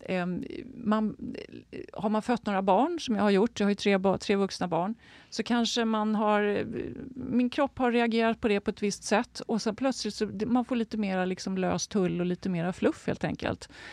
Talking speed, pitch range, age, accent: 205 wpm, 165-215 Hz, 40-59, native